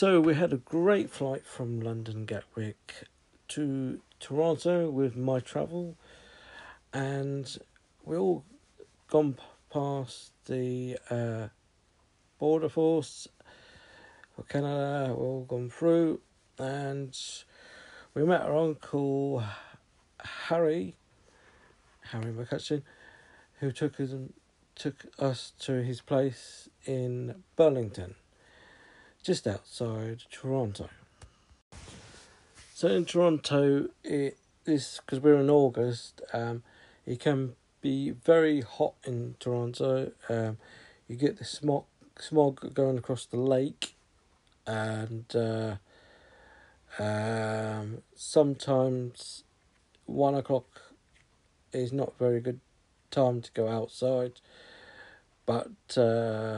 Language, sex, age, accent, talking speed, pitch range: English, male, 50-69, British, 100 wpm, 115-145 Hz